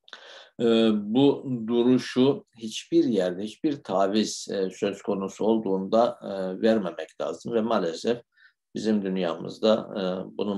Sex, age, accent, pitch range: male, 60-79, native, 90-110 Hz